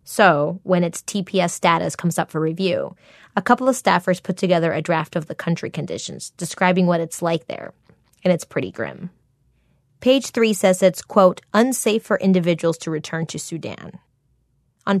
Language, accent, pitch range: English, American, 165-200 Hz